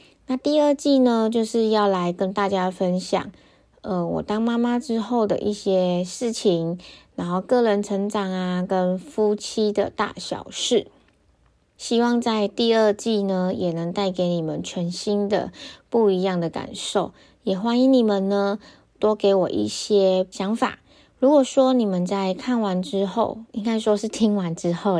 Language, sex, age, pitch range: Chinese, female, 20-39, 185-225 Hz